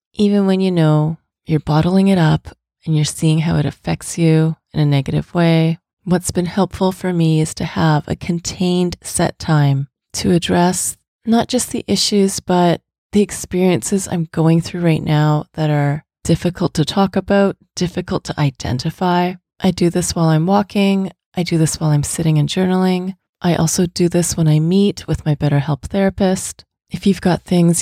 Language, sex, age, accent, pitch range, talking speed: English, female, 30-49, American, 160-185 Hz, 180 wpm